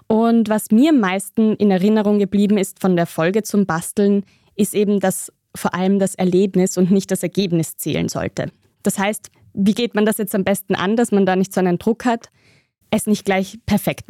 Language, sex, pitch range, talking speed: German, female, 175-215 Hz, 210 wpm